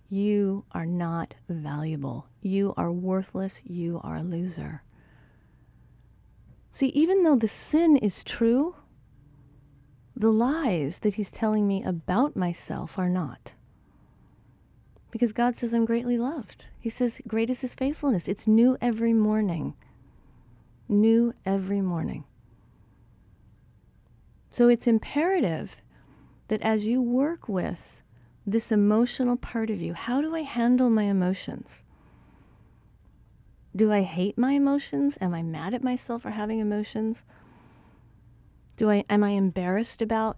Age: 40-59